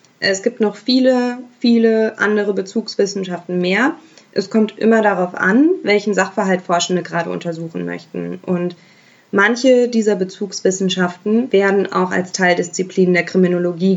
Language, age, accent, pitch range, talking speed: German, 20-39, German, 180-215 Hz, 125 wpm